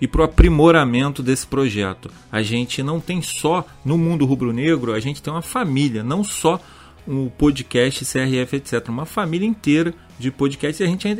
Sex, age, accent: male, 40-59, Brazilian